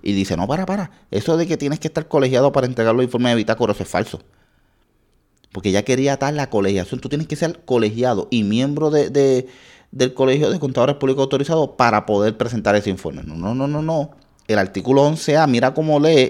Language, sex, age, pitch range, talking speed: Spanish, male, 30-49, 100-140 Hz, 215 wpm